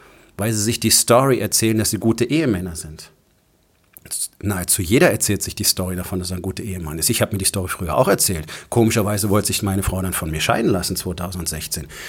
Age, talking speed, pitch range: 40-59, 215 wpm, 95-110 Hz